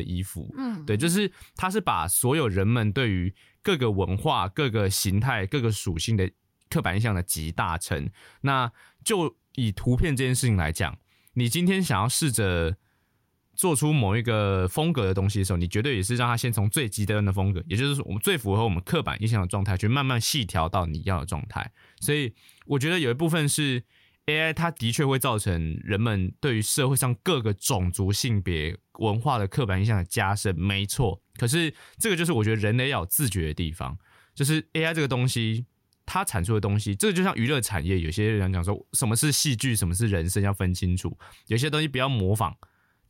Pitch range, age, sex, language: 95-135 Hz, 20-39, male, Chinese